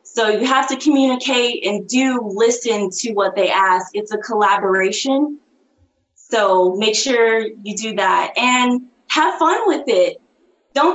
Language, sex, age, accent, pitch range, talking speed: English, female, 20-39, American, 205-270 Hz, 150 wpm